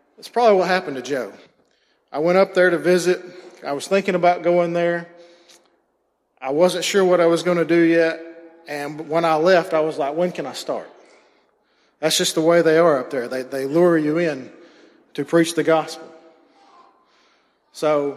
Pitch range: 160-180 Hz